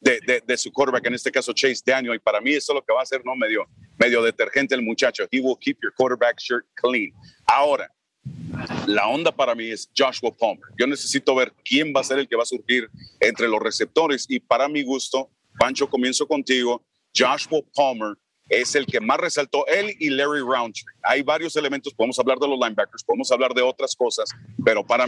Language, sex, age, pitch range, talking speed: English, male, 40-59, 120-145 Hz, 215 wpm